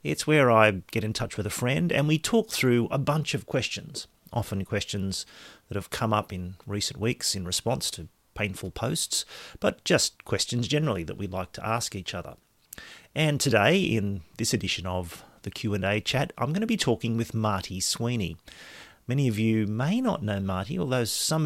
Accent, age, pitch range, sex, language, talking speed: Australian, 40-59, 95-125 Hz, male, English, 190 wpm